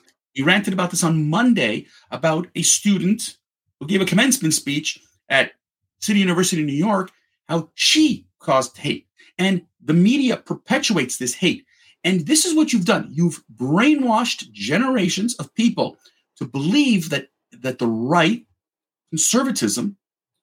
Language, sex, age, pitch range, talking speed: English, male, 40-59, 170-260 Hz, 140 wpm